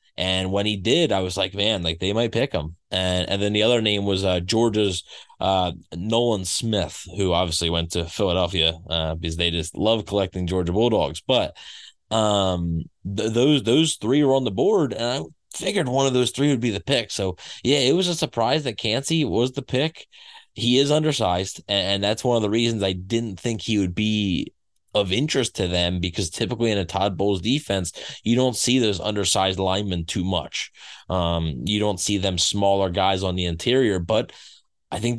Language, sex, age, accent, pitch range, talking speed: English, male, 20-39, American, 95-120 Hz, 200 wpm